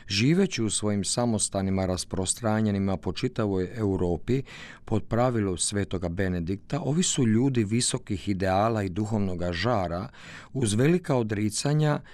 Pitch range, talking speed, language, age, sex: 100-125 Hz, 115 wpm, Croatian, 50-69, male